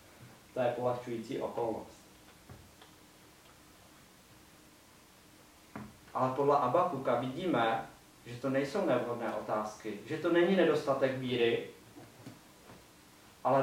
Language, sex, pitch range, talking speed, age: Czech, male, 120-150 Hz, 85 wpm, 30-49